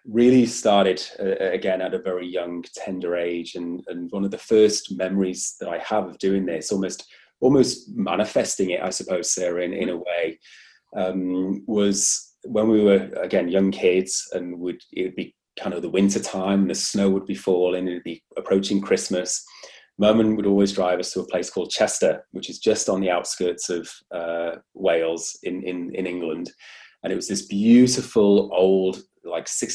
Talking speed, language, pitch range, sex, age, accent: 185 wpm, English, 90-100 Hz, male, 30-49, British